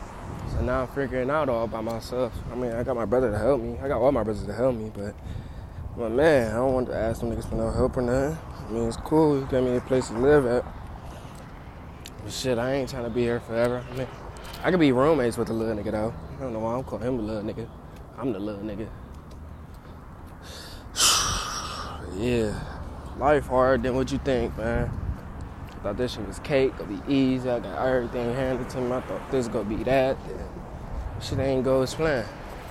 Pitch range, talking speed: 105-130 Hz, 220 wpm